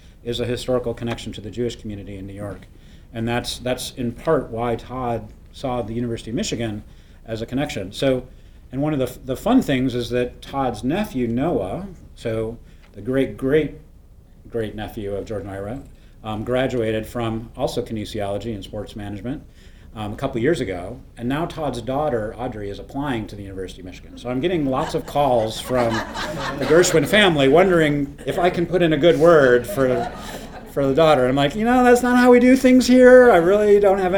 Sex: male